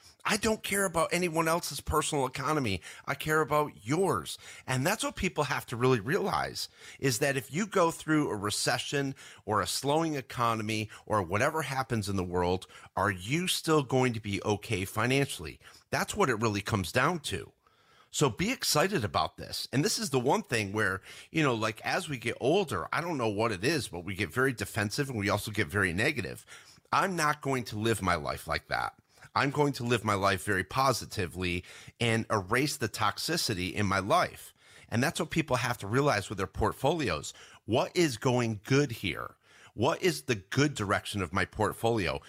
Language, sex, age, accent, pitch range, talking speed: English, male, 40-59, American, 105-140 Hz, 195 wpm